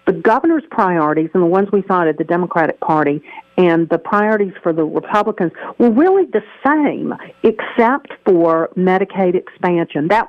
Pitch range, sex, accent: 170-220 Hz, female, American